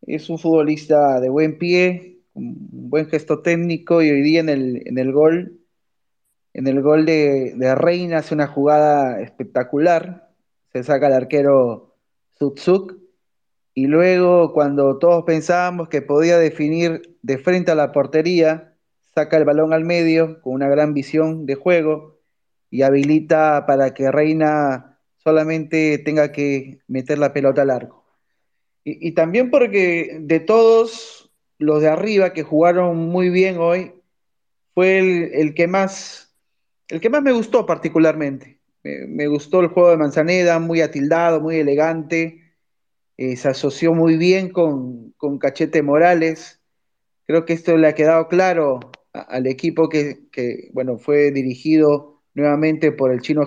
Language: Spanish